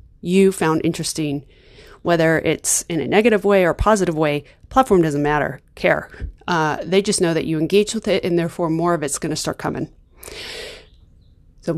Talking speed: 180 wpm